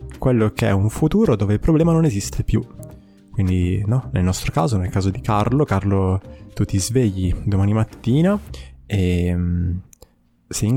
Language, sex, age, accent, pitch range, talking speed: Italian, male, 20-39, native, 100-120 Hz, 165 wpm